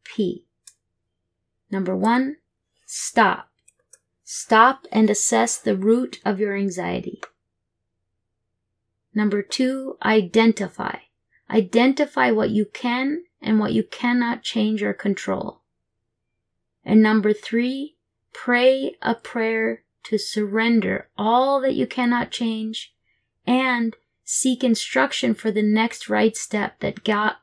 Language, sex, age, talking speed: English, female, 30-49, 105 wpm